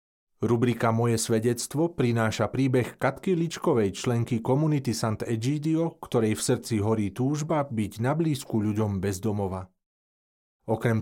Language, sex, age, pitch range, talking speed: Slovak, male, 40-59, 105-135 Hz, 110 wpm